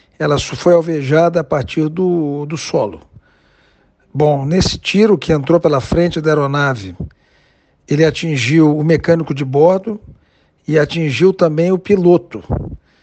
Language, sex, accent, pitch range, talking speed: Portuguese, male, Brazilian, 150-170 Hz, 130 wpm